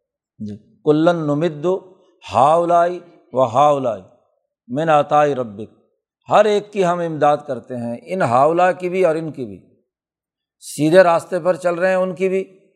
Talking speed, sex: 150 wpm, male